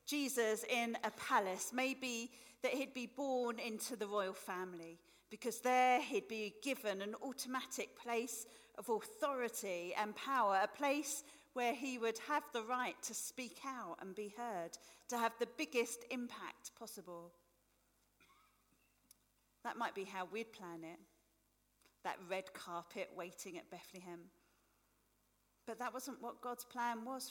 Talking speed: 145 wpm